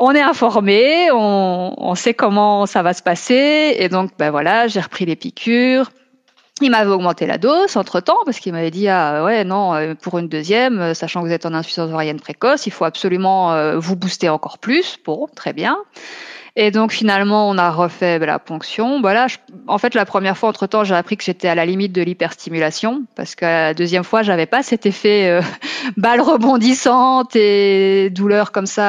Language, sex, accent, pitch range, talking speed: French, female, French, 170-215 Hz, 200 wpm